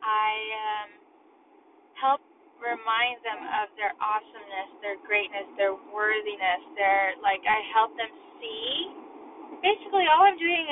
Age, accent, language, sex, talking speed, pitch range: 20-39, American, English, female, 125 wpm, 230-375 Hz